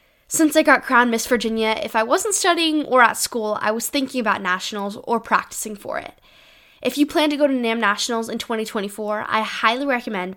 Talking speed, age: 205 wpm, 10-29